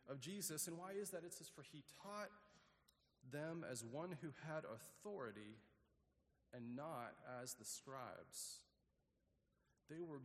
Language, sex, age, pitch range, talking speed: English, male, 40-59, 125-170 Hz, 140 wpm